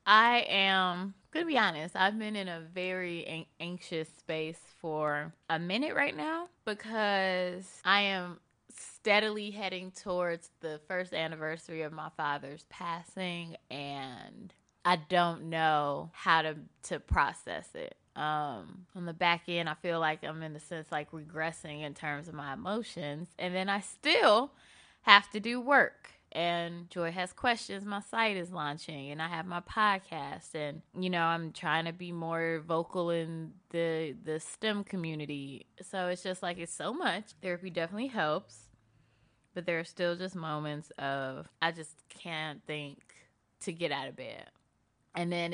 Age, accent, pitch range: 20-39, American, 155-190 Hz